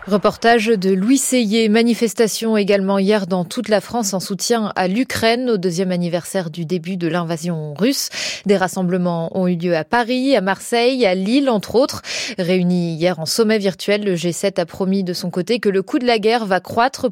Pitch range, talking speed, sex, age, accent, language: 185-245 Hz, 195 wpm, female, 20-39, French, French